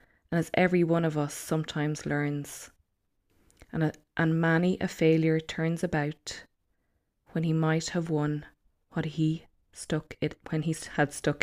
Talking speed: 145 wpm